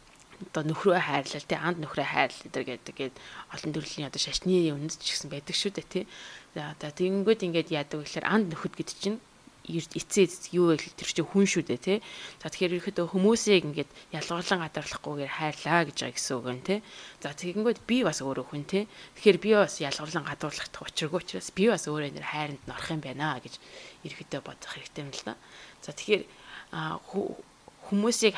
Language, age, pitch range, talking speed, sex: English, 20-39, 150-195 Hz, 100 wpm, female